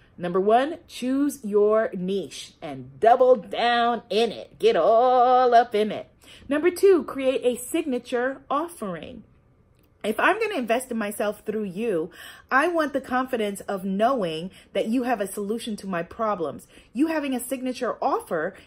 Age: 30-49